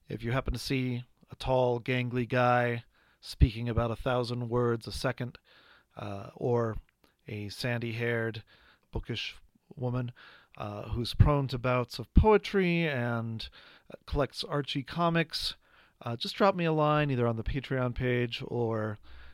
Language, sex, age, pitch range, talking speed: English, male, 40-59, 110-145 Hz, 140 wpm